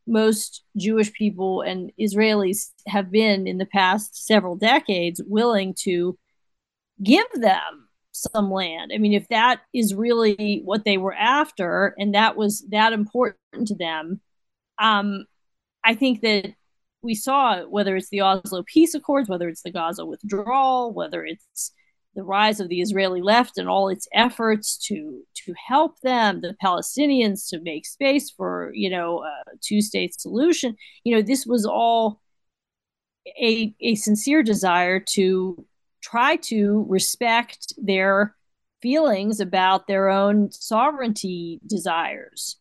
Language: English